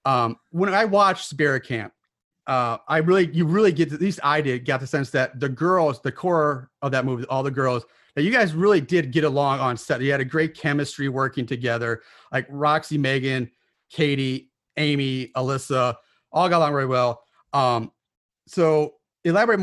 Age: 30-49